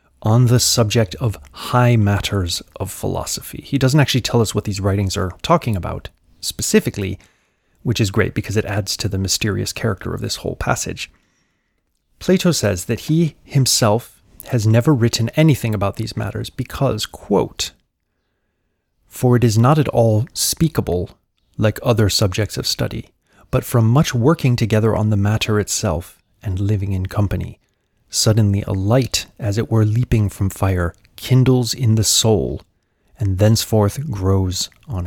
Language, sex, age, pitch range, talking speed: English, male, 30-49, 100-120 Hz, 155 wpm